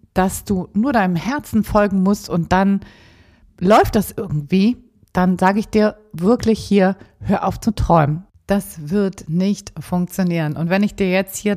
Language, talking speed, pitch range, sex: German, 165 wpm, 160-210 Hz, female